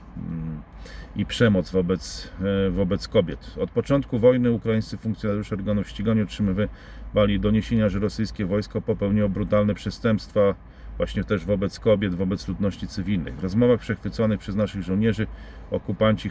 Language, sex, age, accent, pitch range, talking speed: Polish, male, 40-59, native, 100-115 Hz, 125 wpm